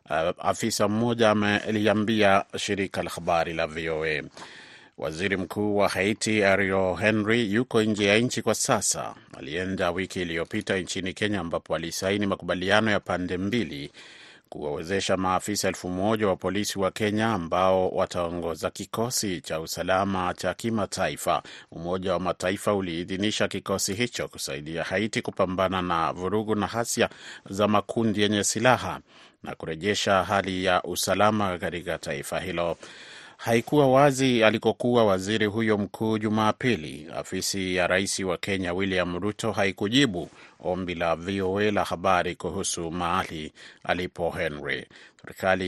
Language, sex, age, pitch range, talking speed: Swahili, male, 30-49, 90-110 Hz, 125 wpm